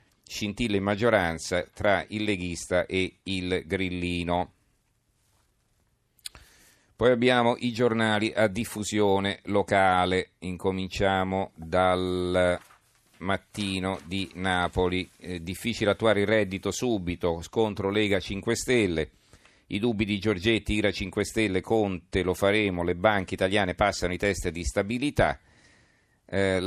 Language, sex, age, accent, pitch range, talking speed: Italian, male, 40-59, native, 90-105 Hz, 115 wpm